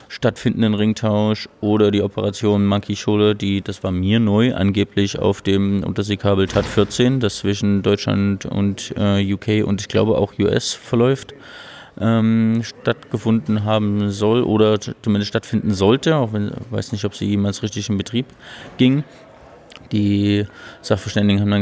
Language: German